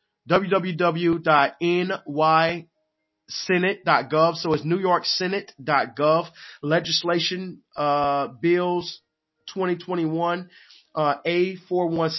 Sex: male